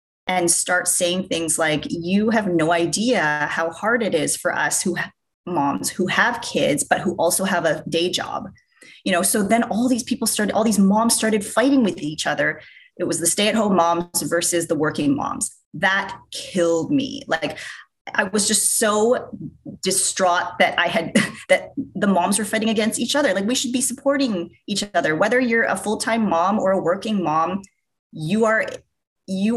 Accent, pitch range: American, 175-230 Hz